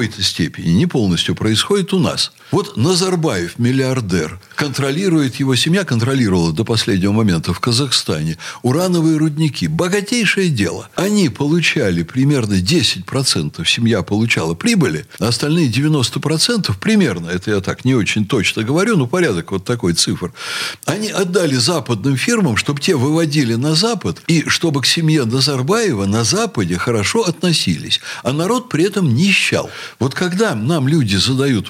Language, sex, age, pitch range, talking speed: Russian, male, 60-79, 115-170 Hz, 145 wpm